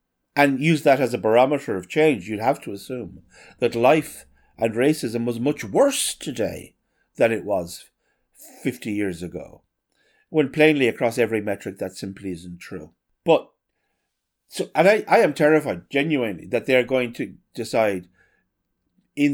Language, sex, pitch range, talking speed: English, male, 100-135 Hz, 150 wpm